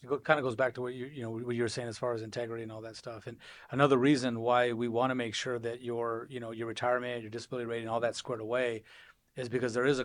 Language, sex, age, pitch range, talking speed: English, male, 30-49, 115-130 Hz, 285 wpm